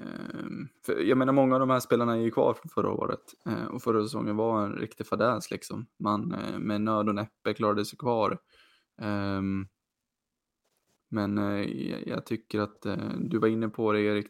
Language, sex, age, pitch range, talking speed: Swedish, male, 20-39, 105-120 Hz, 155 wpm